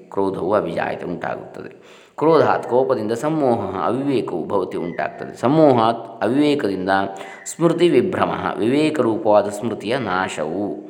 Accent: native